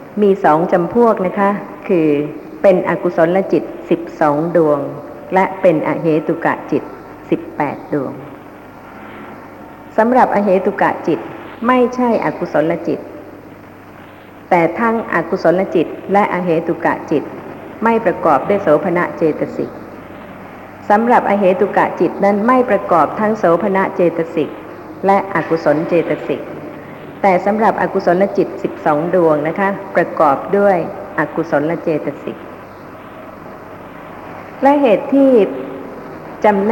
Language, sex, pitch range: Thai, female, 165-205 Hz